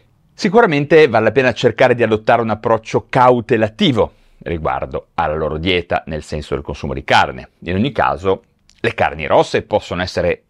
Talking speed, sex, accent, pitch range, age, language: 160 wpm, male, native, 80-115 Hz, 40-59, Italian